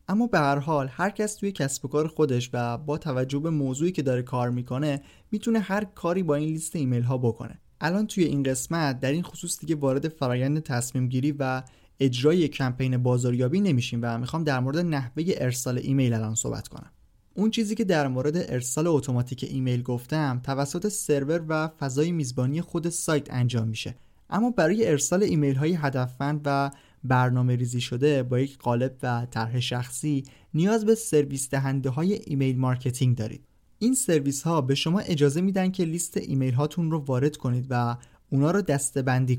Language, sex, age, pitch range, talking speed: Persian, male, 20-39, 130-165 Hz, 175 wpm